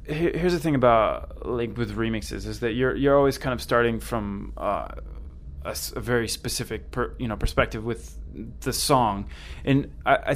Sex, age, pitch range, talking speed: male, 20-39, 100-125 Hz, 175 wpm